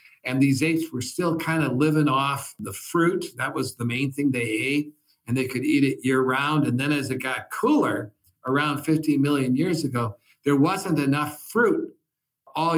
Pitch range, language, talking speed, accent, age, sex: 130-155 Hz, English, 195 wpm, American, 50-69, male